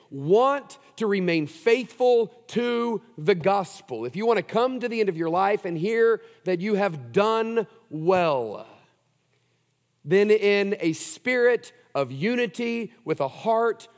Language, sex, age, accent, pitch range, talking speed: English, male, 40-59, American, 140-200 Hz, 145 wpm